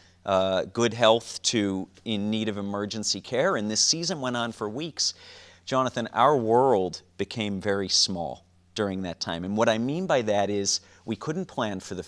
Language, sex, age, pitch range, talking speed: English, male, 40-59, 100-130 Hz, 185 wpm